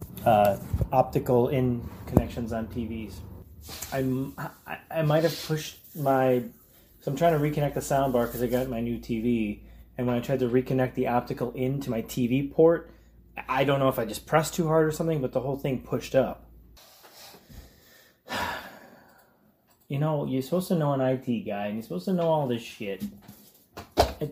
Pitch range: 125-185 Hz